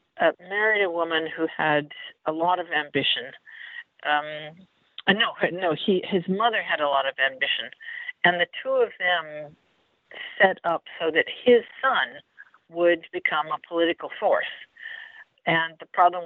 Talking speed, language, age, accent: 150 wpm, English, 50-69, American